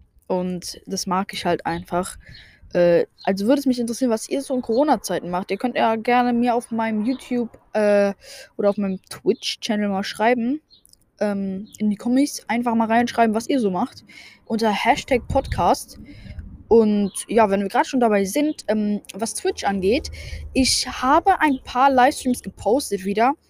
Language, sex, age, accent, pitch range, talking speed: German, female, 10-29, German, 195-245 Hz, 170 wpm